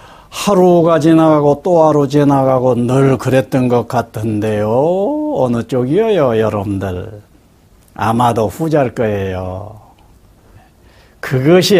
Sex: male